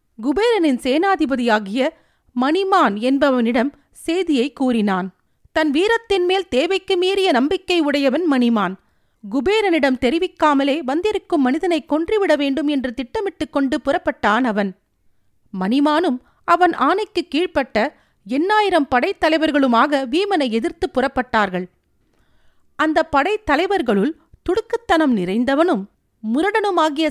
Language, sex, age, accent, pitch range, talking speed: Tamil, female, 40-59, native, 245-340 Hz, 85 wpm